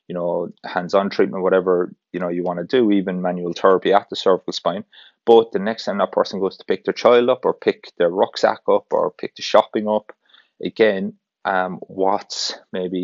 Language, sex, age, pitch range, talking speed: English, male, 30-49, 90-105 Hz, 200 wpm